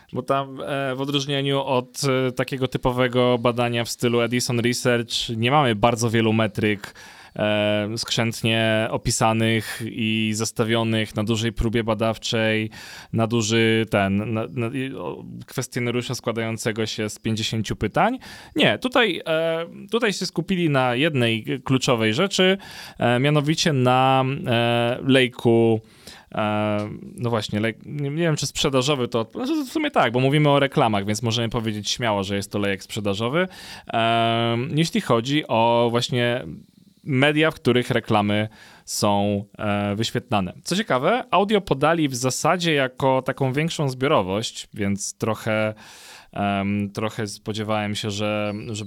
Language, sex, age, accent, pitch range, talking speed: Polish, male, 20-39, native, 110-130 Hz, 120 wpm